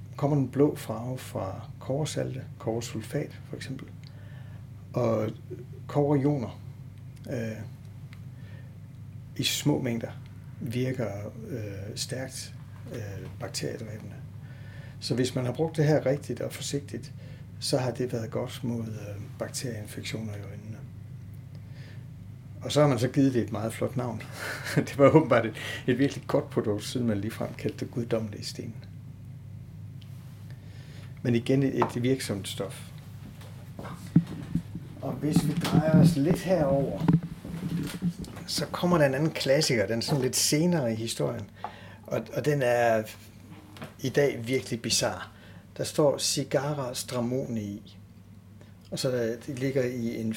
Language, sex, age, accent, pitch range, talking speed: Danish, male, 60-79, native, 110-135 Hz, 130 wpm